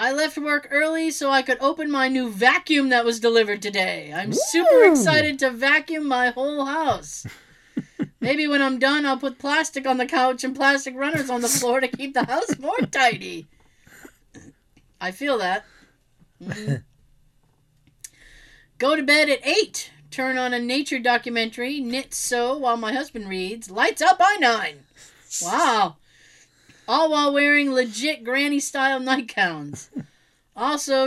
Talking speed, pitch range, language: 150 wpm, 230-285 Hz, English